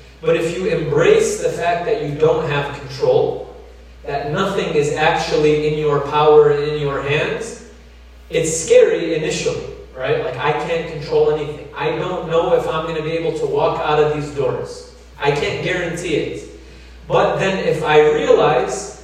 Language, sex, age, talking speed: English, male, 30-49, 175 wpm